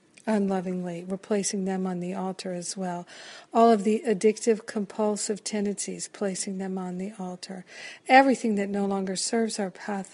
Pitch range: 190-220 Hz